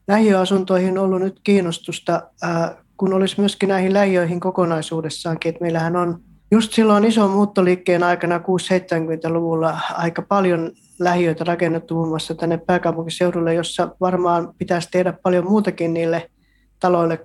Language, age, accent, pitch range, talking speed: Finnish, 20-39, native, 170-190 Hz, 125 wpm